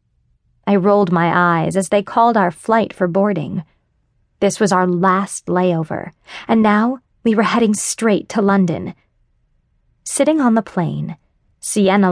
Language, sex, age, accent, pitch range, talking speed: English, female, 30-49, American, 175-220 Hz, 145 wpm